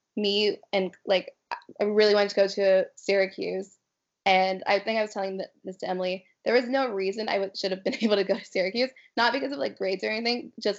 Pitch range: 190-205 Hz